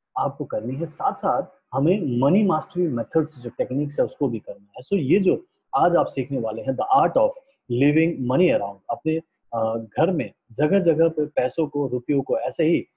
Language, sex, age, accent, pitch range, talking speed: Hindi, male, 30-49, native, 125-180 Hz, 195 wpm